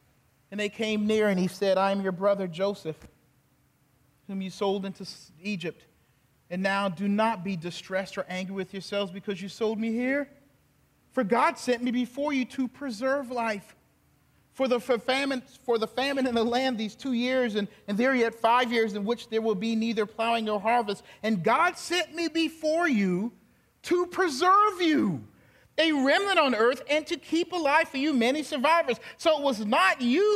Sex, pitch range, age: male, 190-265 Hz, 40-59